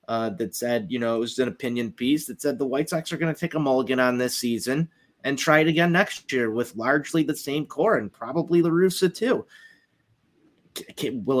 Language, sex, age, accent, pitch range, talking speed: English, male, 30-49, American, 130-160 Hz, 220 wpm